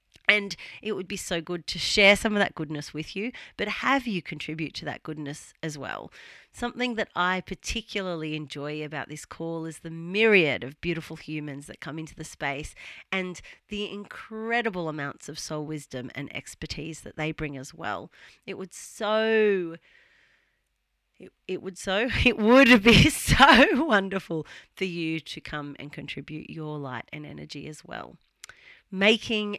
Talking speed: 165 wpm